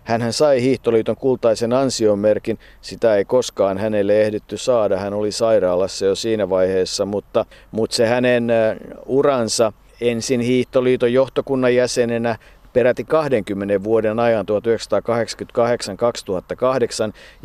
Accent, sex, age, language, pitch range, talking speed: native, male, 50-69, Finnish, 110-130 Hz, 105 wpm